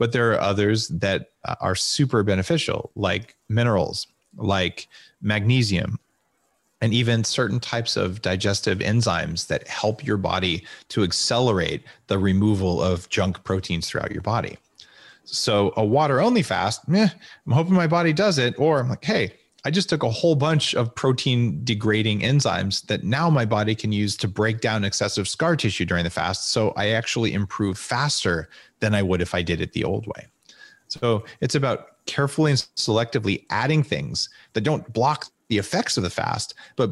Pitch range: 100-140 Hz